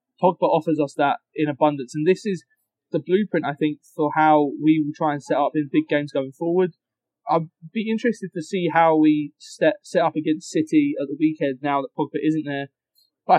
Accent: British